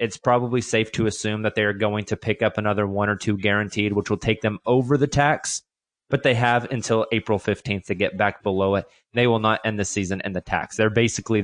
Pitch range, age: 105-125 Hz, 20-39